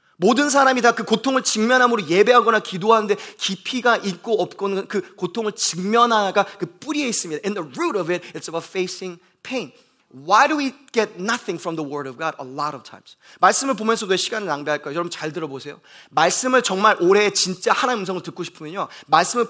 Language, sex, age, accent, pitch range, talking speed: English, male, 30-49, Korean, 185-265 Hz, 170 wpm